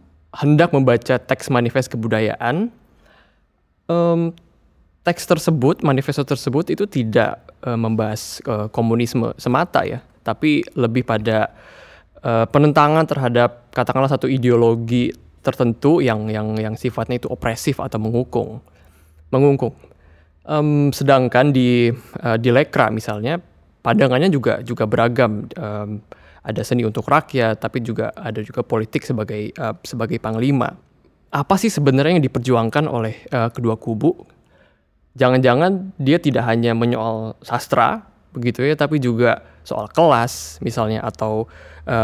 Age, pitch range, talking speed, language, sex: 20-39, 110-140 Hz, 125 wpm, Indonesian, male